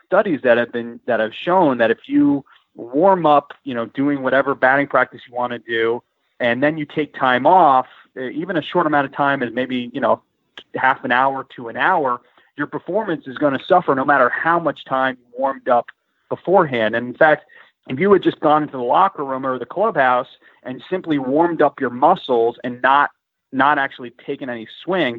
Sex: male